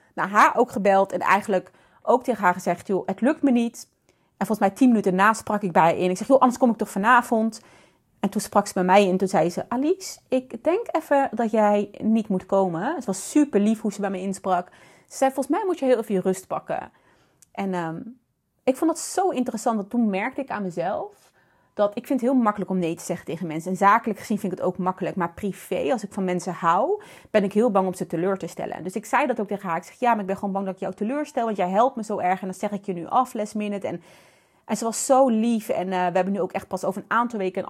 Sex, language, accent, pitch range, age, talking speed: female, Dutch, Dutch, 185-240 Hz, 30-49, 280 wpm